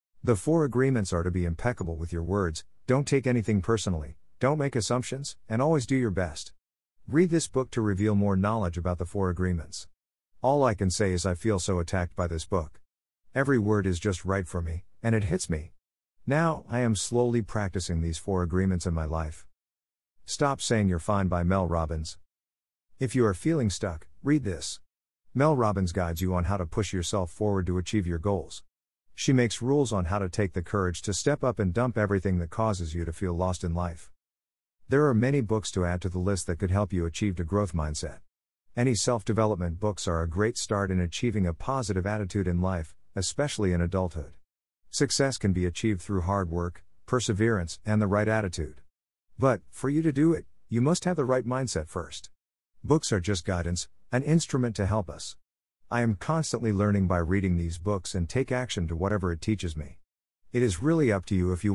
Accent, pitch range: American, 85-115 Hz